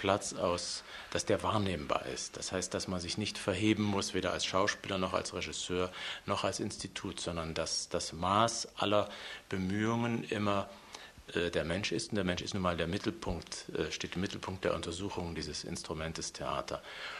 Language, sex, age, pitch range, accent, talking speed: German, male, 50-69, 85-100 Hz, German, 180 wpm